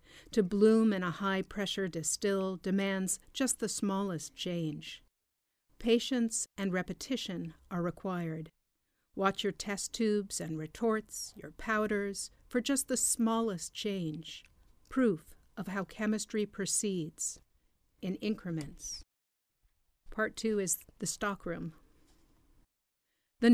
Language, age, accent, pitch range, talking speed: English, 50-69, American, 175-220 Hz, 105 wpm